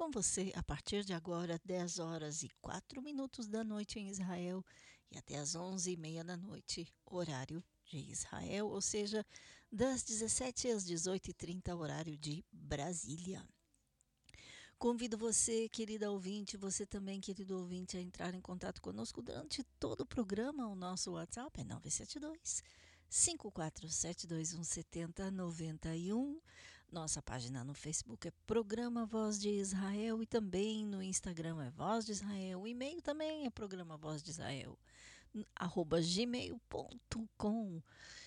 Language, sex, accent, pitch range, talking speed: Portuguese, female, Brazilian, 165-220 Hz, 125 wpm